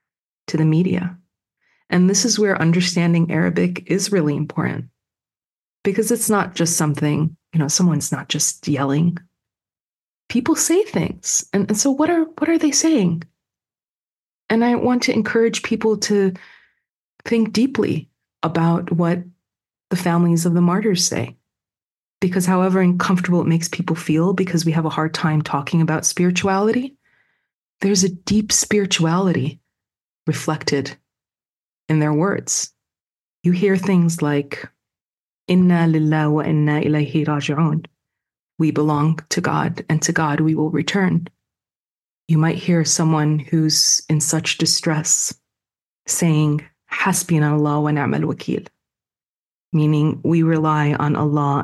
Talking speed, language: 130 wpm, English